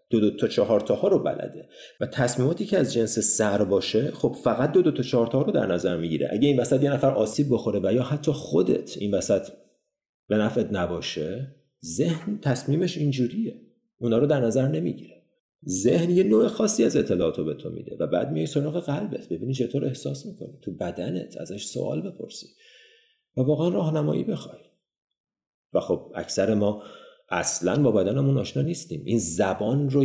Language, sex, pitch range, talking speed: Persian, male, 105-150 Hz, 180 wpm